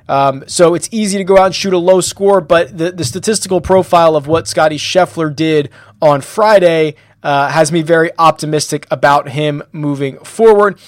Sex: male